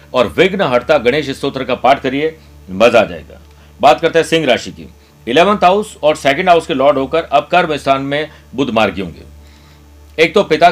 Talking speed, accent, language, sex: 195 wpm, native, Hindi, male